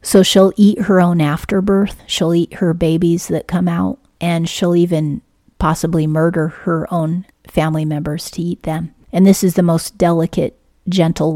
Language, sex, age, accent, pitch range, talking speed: English, female, 40-59, American, 165-185 Hz, 170 wpm